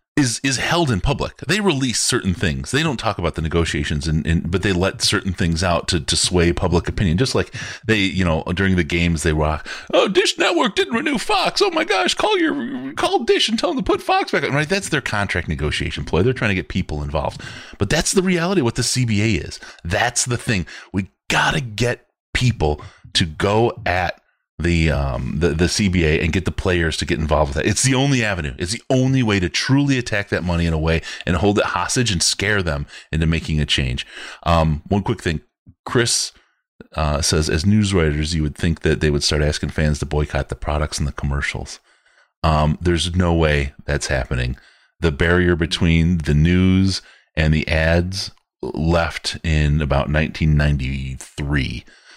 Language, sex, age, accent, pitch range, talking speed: English, male, 30-49, American, 75-110 Hz, 200 wpm